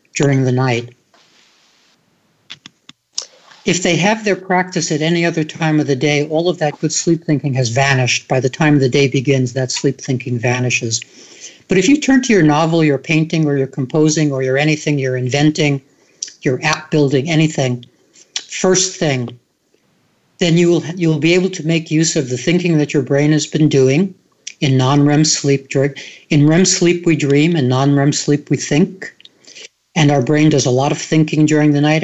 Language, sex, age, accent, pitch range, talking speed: English, male, 60-79, American, 135-165 Hz, 185 wpm